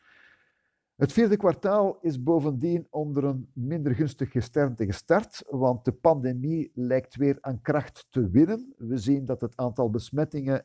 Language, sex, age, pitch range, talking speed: Dutch, male, 50-69, 125-155 Hz, 145 wpm